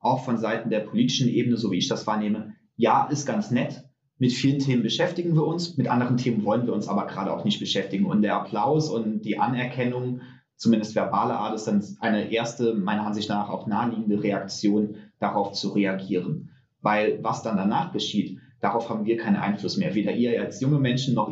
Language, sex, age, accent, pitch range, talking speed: German, male, 30-49, German, 105-125 Hz, 200 wpm